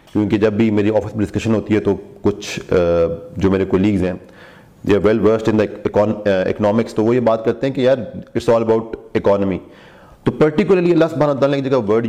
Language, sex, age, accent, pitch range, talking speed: English, male, 40-59, Indian, 110-140 Hz, 105 wpm